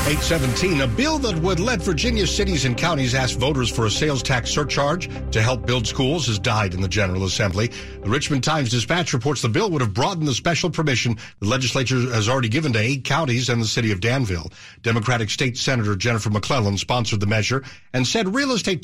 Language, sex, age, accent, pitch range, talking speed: English, male, 60-79, American, 105-145 Hz, 205 wpm